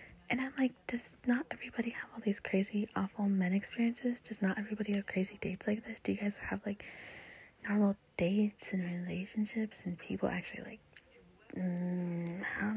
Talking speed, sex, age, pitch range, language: 170 wpm, female, 20-39, 195-230 Hz, English